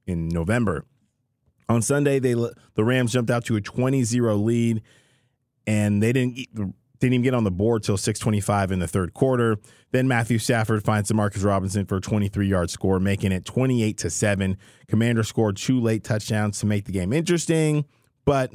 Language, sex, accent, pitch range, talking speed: English, male, American, 95-120 Hz, 170 wpm